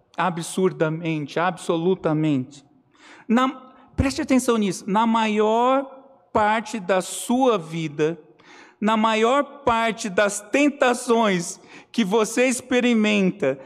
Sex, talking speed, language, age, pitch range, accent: male, 90 wpm, Portuguese, 50-69, 175-240 Hz, Brazilian